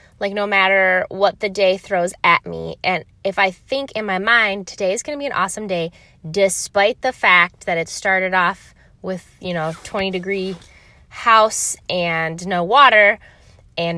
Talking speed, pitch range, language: 175 wpm, 175-220 Hz, English